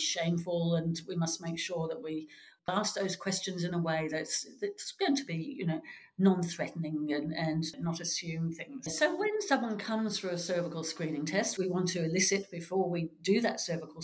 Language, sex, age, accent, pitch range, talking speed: English, female, 50-69, British, 155-180 Hz, 190 wpm